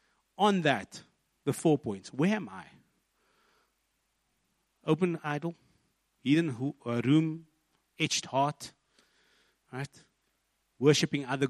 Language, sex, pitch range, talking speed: English, male, 125-170 Hz, 95 wpm